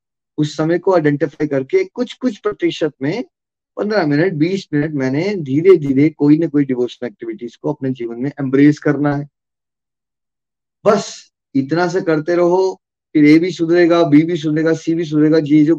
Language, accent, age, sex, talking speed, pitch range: Hindi, native, 20-39, male, 170 wpm, 135-165 Hz